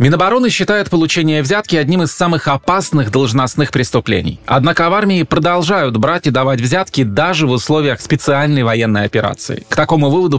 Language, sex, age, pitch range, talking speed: Russian, male, 20-39, 120-160 Hz, 155 wpm